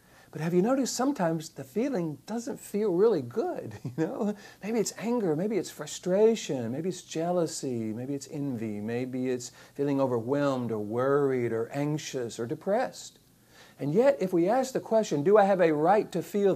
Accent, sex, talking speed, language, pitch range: American, male, 180 wpm, English, 130-195 Hz